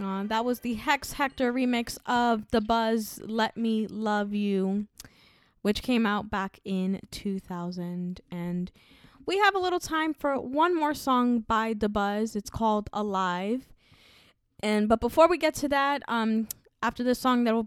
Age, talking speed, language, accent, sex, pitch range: 10-29, 165 wpm, English, American, female, 205-275 Hz